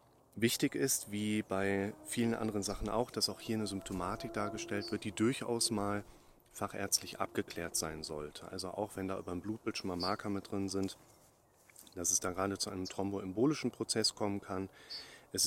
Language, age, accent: German, 30-49, German